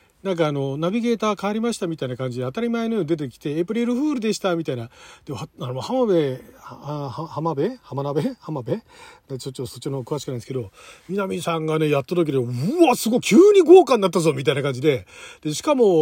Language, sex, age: Japanese, male, 40-59